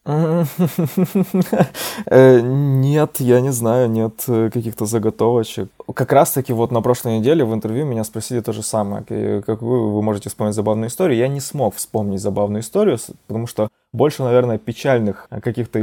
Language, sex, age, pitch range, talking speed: Russian, male, 20-39, 105-130 Hz, 150 wpm